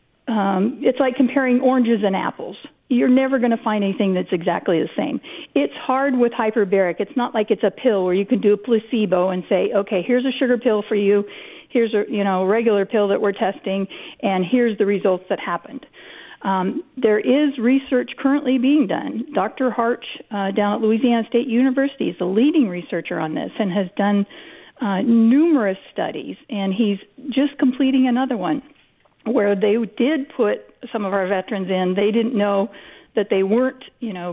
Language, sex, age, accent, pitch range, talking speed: English, female, 40-59, American, 200-265 Hz, 185 wpm